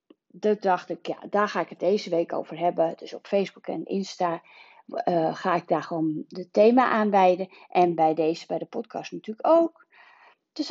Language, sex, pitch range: Dutch, female, 180-240 Hz